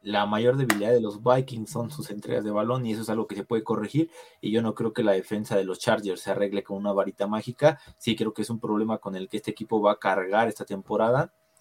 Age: 20-39